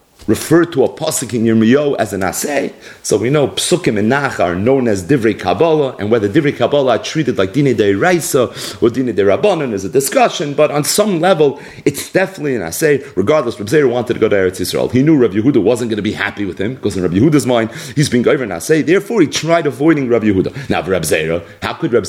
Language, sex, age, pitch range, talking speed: English, male, 40-59, 110-155 Hz, 240 wpm